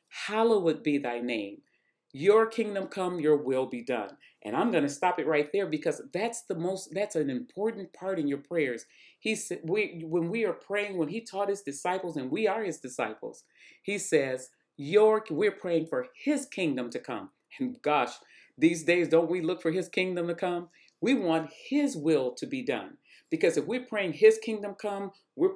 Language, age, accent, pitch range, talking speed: English, 40-59, American, 160-215 Hz, 195 wpm